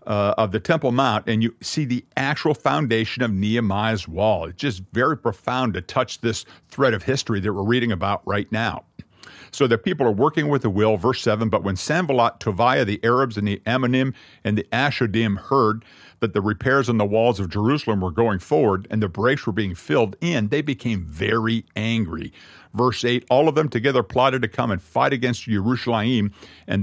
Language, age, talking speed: English, 50-69, 200 wpm